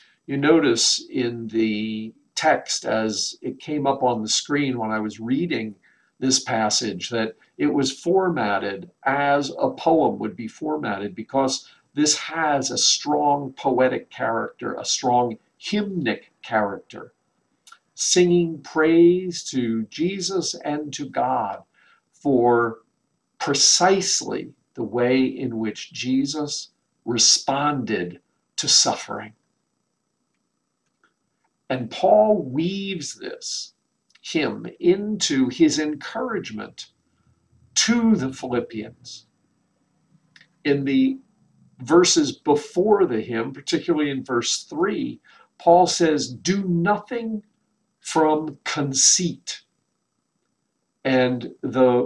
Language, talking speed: English, 100 wpm